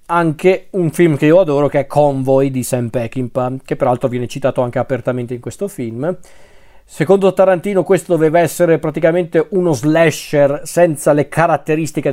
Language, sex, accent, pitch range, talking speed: Italian, male, native, 130-175 Hz, 160 wpm